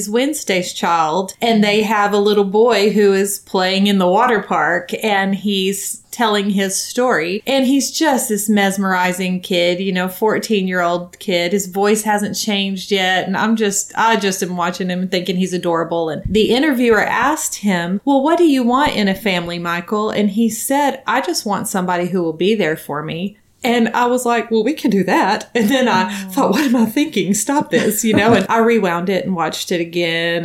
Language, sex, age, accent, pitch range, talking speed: English, female, 30-49, American, 185-225 Hz, 205 wpm